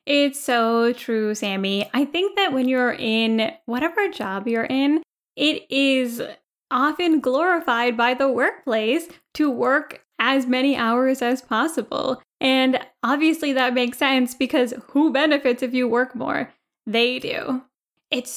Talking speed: 140 wpm